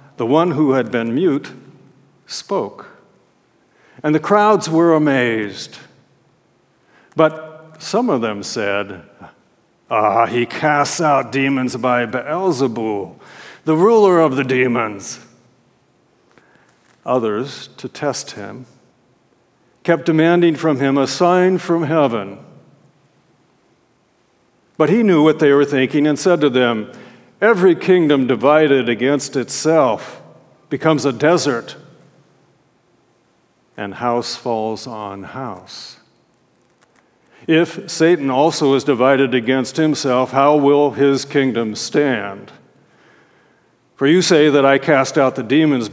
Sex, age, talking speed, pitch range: male, 60-79, 110 wpm, 120-155 Hz